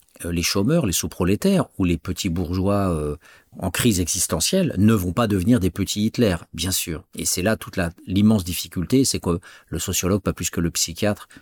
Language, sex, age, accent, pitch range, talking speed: French, male, 50-69, French, 85-105 Hz, 195 wpm